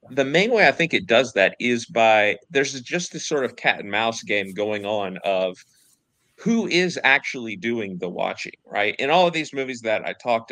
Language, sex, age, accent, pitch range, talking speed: English, male, 30-49, American, 95-120 Hz, 210 wpm